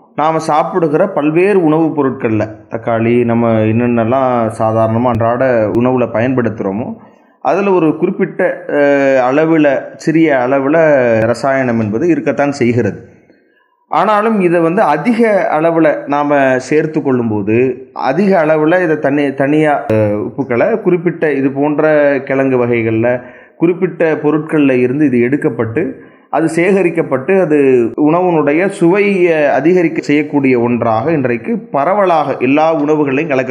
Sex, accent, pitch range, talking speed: male, Indian, 125-160 Hz, 95 wpm